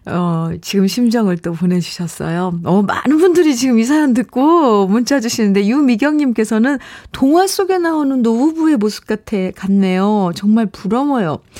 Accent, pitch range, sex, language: native, 190-265 Hz, female, Korean